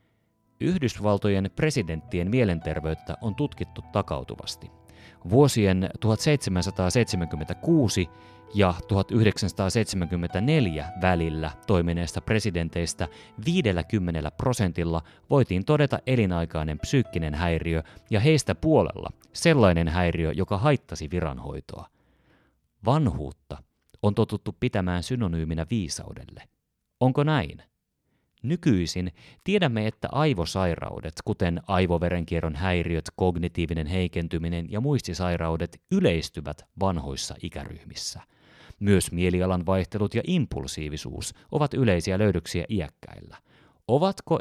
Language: Finnish